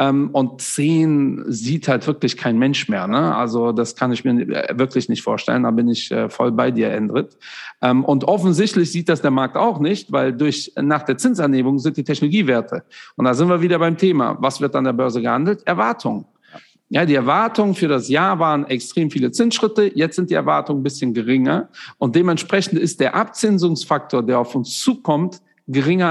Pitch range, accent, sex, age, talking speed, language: 130-175 Hz, German, male, 50-69, 185 wpm, German